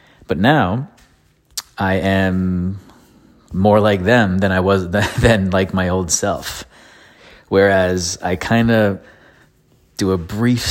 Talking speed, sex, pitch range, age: 120 wpm, male, 90-105 Hz, 20-39